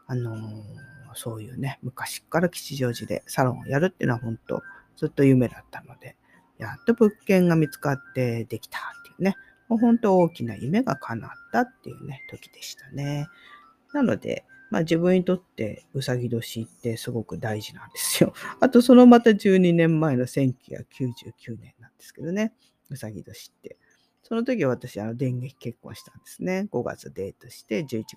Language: Japanese